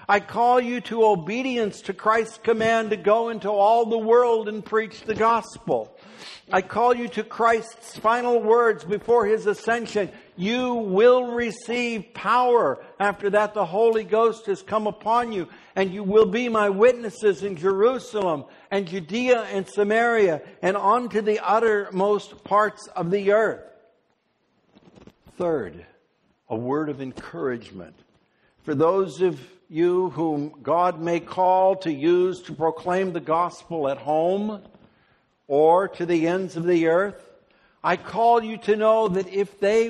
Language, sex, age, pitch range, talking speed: English, male, 60-79, 185-225 Hz, 145 wpm